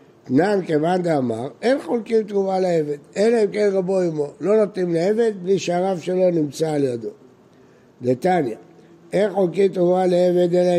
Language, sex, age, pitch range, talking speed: Hebrew, male, 60-79, 150-205 Hz, 140 wpm